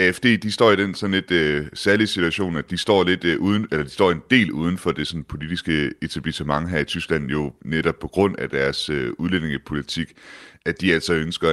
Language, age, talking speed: Danish, 30-49, 220 wpm